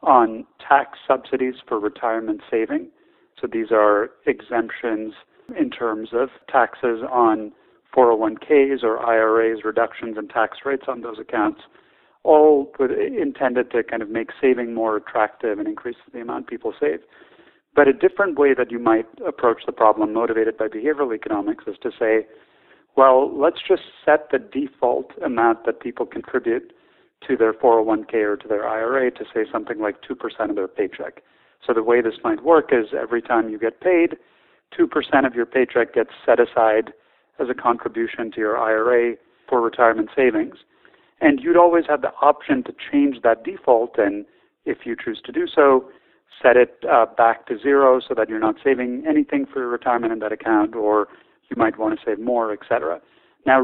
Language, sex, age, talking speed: English, male, 40-59, 170 wpm